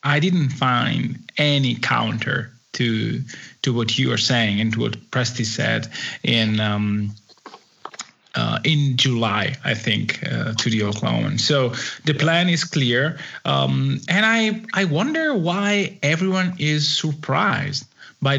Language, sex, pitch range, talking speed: English, male, 130-180 Hz, 135 wpm